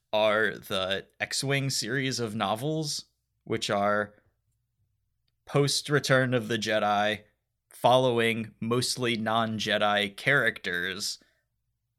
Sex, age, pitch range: male, 20-39, 105-115 Hz